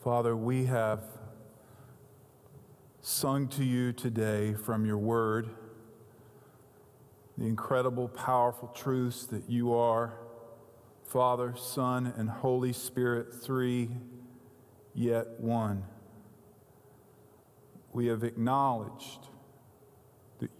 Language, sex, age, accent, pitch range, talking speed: English, male, 40-59, American, 110-135 Hz, 85 wpm